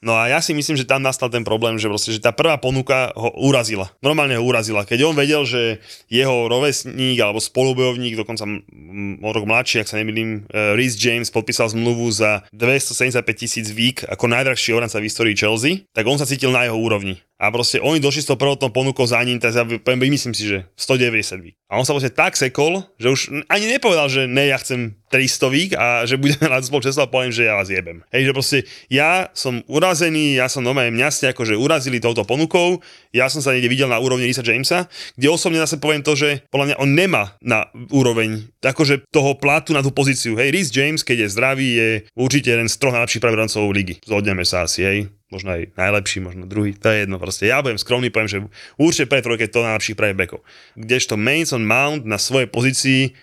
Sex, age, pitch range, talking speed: male, 20-39, 110-135 Hz, 215 wpm